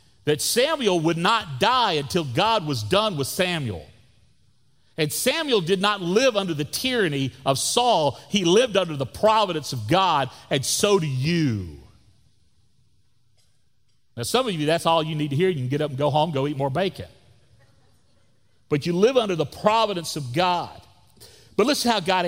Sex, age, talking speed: male, 40-59, 180 wpm